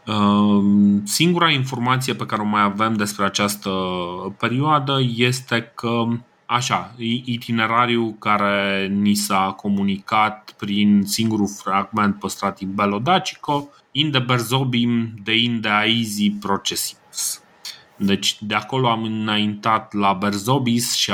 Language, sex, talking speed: Romanian, male, 105 wpm